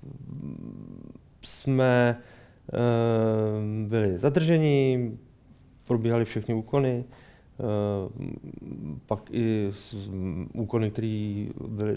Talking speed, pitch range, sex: 55 wpm, 105-125 Hz, male